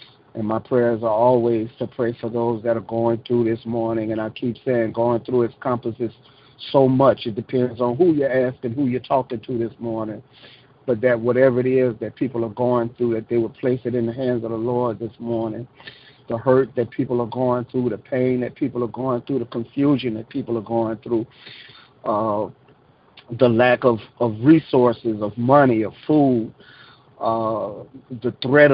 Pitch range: 115-135 Hz